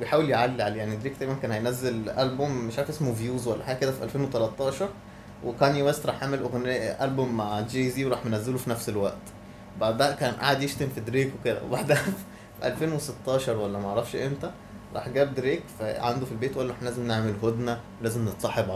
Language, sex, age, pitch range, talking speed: Arabic, male, 20-39, 115-135 Hz, 190 wpm